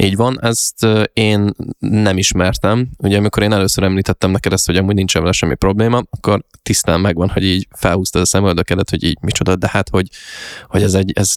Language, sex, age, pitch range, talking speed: Hungarian, male, 20-39, 95-105 Hz, 195 wpm